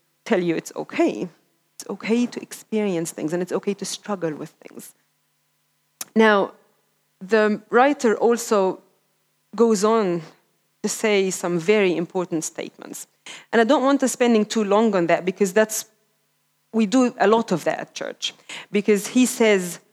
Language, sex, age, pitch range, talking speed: English, female, 30-49, 190-235 Hz, 155 wpm